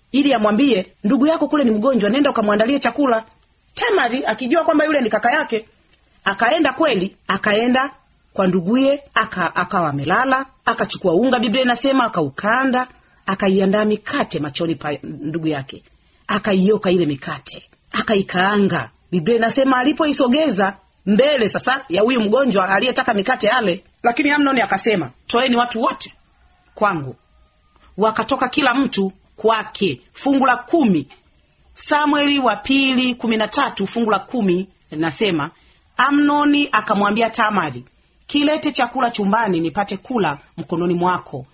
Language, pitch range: Swahili, 180-255 Hz